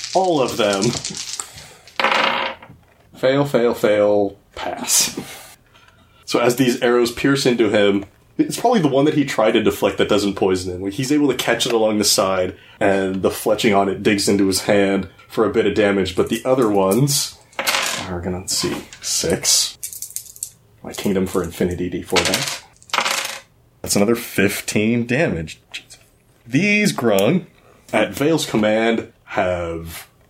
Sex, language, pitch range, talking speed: male, English, 100-135 Hz, 150 wpm